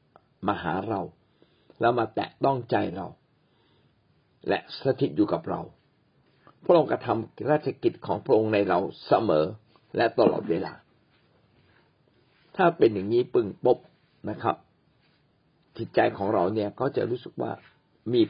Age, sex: 60-79, male